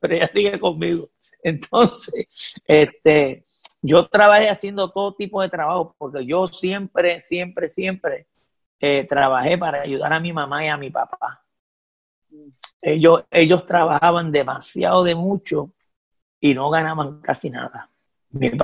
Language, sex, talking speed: Spanish, male, 130 wpm